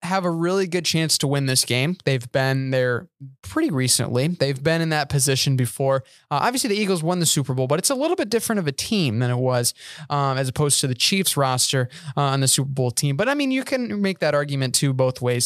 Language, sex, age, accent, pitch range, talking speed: English, male, 20-39, American, 135-175 Hz, 250 wpm